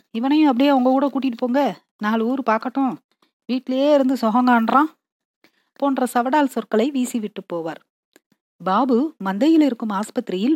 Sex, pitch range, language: female, 205-265 Hz, Tamil